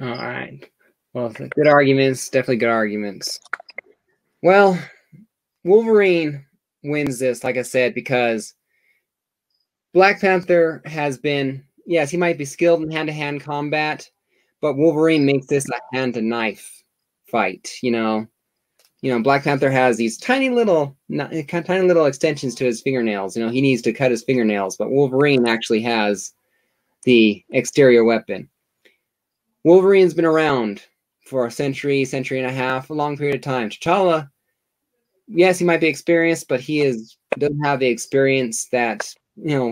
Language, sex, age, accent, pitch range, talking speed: English, male, 20-39, American, 125-160 Hz, 145 wpm